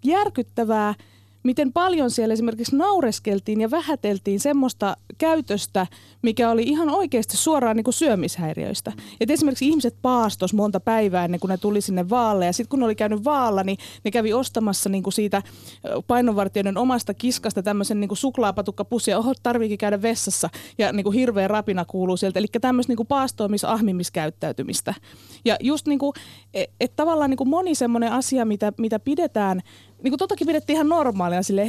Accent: native